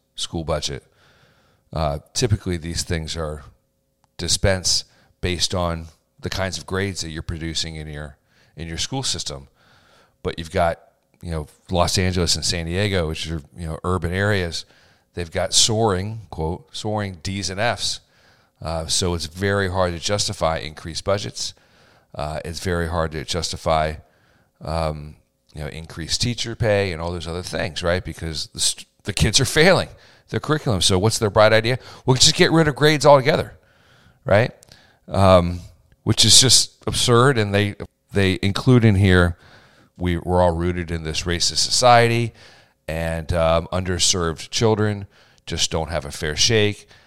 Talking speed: 160 wpm